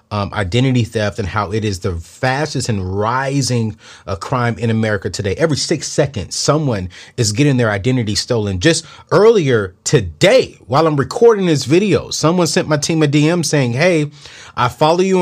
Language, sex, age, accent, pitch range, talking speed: English, male, 30-49, American, 120-185 Hz, 175 wpm